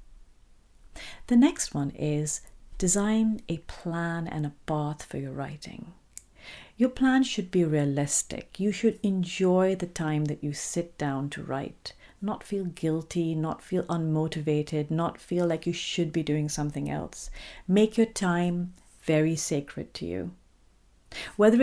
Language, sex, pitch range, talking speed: English, female, 150-190 Hz, 145 wpm